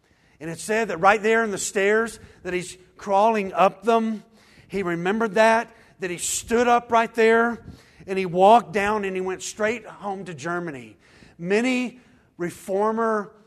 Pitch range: 150-210 Hz